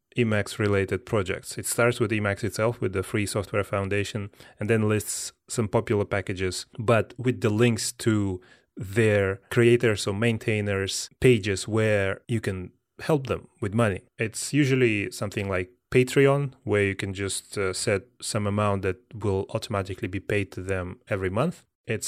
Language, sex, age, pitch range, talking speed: English, male, 20-39, 95-115 Hz, 160 wpm